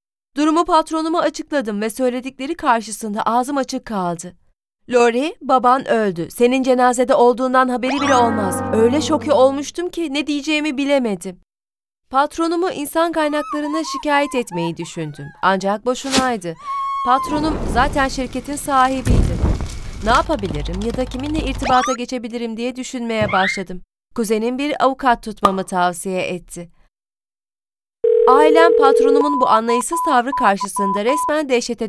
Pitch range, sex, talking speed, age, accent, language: 215-285 Hz, female, 115 wpm, 30-49, native, Turkish